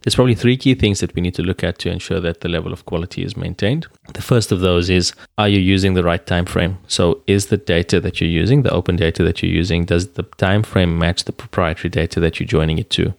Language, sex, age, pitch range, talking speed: English, male, 20-39, 80-95 Hz, 265 wpm